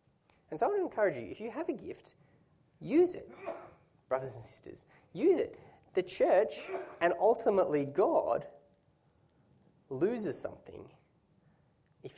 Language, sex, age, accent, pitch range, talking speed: English, male, 20-39, Australian, 120-170 Hz, 135 wpm